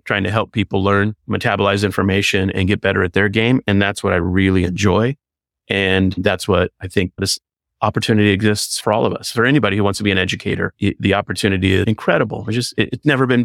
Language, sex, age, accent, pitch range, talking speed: English, male, 30-49, American, 95-115 Hz, 215 wpm